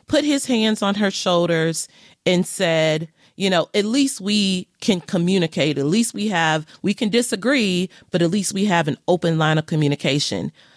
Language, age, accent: English, 30-49, American